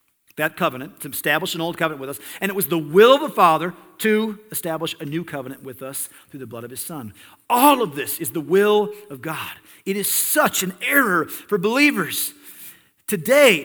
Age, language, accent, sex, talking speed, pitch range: 50-69, English, American, male, 200 wpm, 150-215 Hz